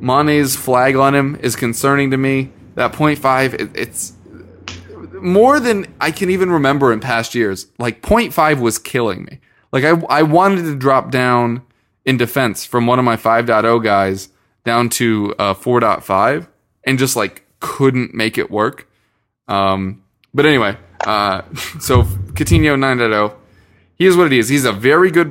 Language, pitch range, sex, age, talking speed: English, 105-135 Hz, male, 20-39, 160 wpm